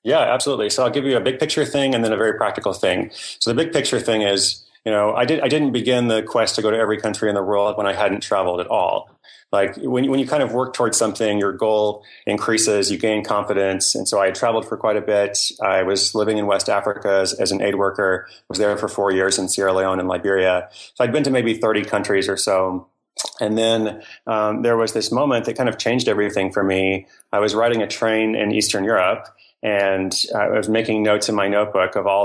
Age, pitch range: 30-49, 100-115 Hz